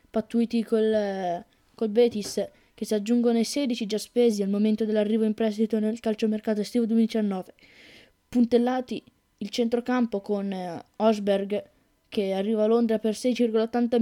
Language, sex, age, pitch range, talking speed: Italian, female, 20-39, 205-230 Hz, 140 wpm